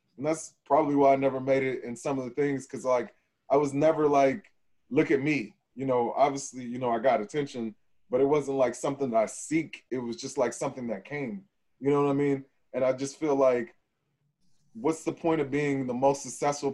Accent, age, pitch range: American, 20-39, 130-150 Hz